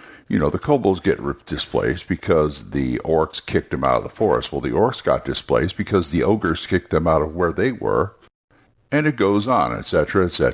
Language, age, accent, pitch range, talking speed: English, 60-79, American, 80-110 Hz, 205 wpm